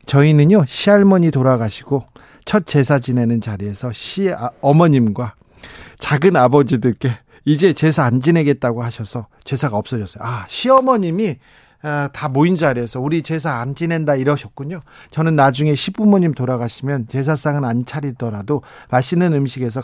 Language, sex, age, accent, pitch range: Korean, male, 40-59, native, 130-170 Hz